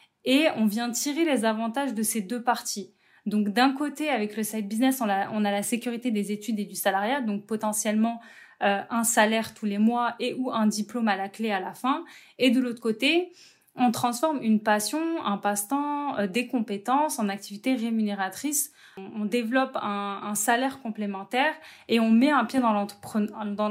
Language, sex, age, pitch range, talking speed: French, female, 20-39, 210-255 Hz, 185 wpm